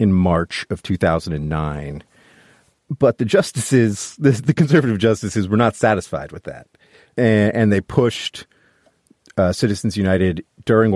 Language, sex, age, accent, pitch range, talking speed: English, male, 40-59, American, 85-110 Hz, 125 wpm